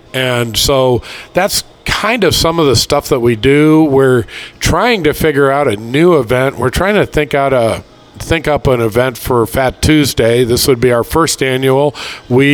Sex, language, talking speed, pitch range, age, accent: male, English, 190 wpm, 120-145 Hz, 50-69, American